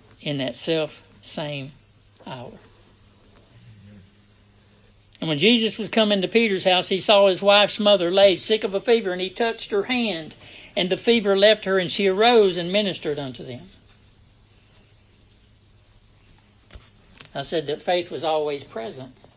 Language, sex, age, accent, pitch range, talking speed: English, male, 60-79, American, 105-175 Hz, 145 wpm